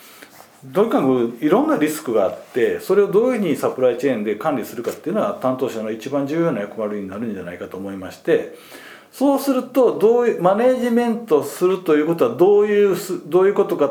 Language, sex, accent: Japanese, male, native